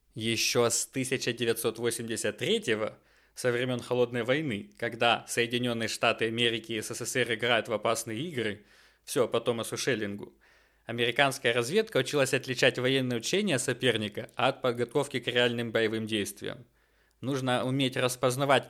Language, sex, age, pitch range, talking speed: English, male, 20-39, 115-135 Hz, 120 wpm